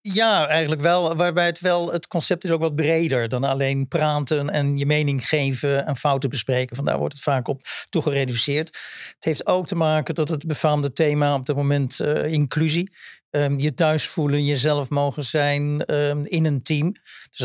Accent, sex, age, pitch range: Dutch, male, 50-69, 135-160 Hz